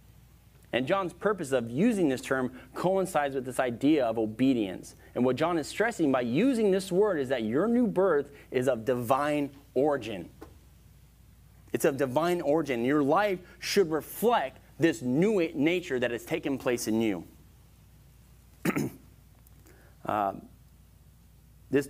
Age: 30-49